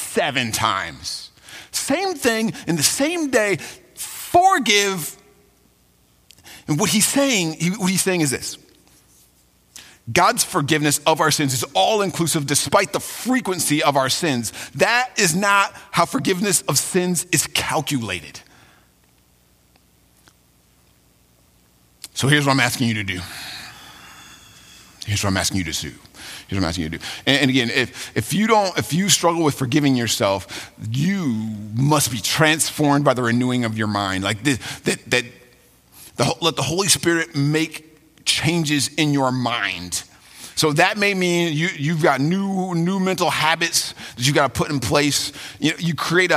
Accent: American